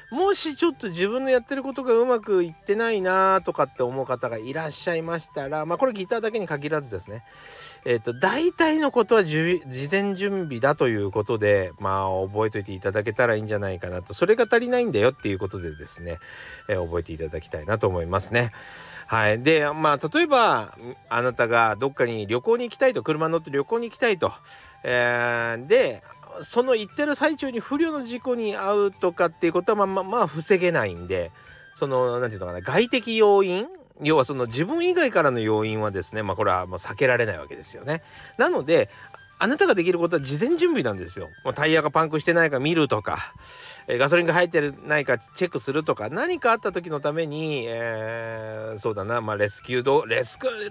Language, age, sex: Japanese, 40-59, male